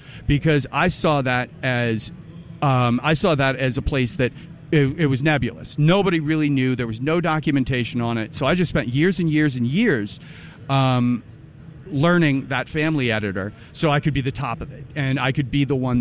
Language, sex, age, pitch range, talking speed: English, male, 40-59, 125-155 Hz, 200 wpm